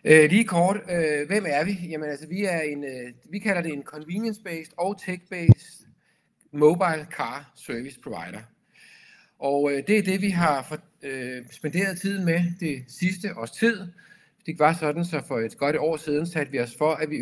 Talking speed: 180 wpm